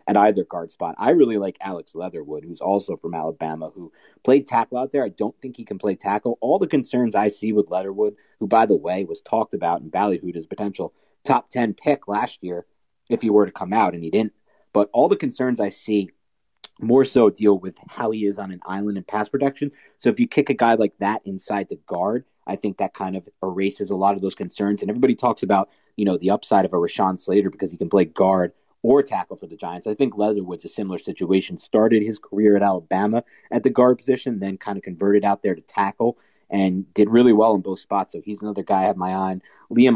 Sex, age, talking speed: male, 40-59, 240 wpm